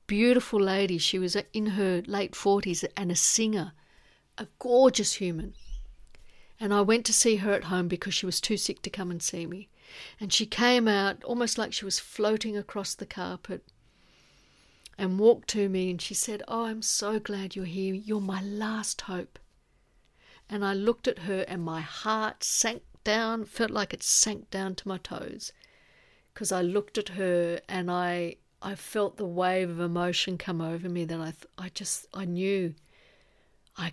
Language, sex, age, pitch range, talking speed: English, female, 60-79, 175-215 Hz, 180 wpm